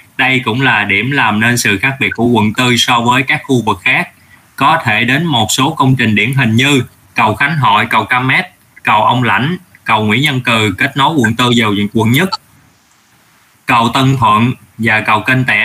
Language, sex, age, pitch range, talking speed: Vietnamese, male, 20-39, 110-135 Hz, 210 wpm